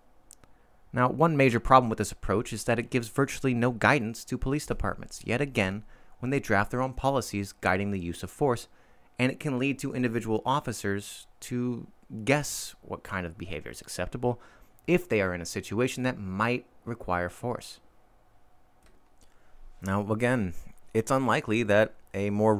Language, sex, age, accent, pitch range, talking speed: English, male, 30-49, American, 100-125 Hz, 165 wpm